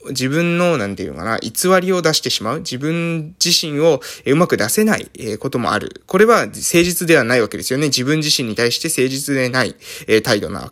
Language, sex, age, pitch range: Japanese, male, 20-39, 120-180 Hz